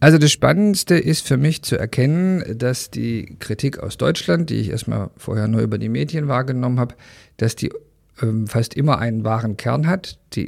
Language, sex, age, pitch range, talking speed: Hungarian, male, 50-69, 105-130 Hz, 190 wpm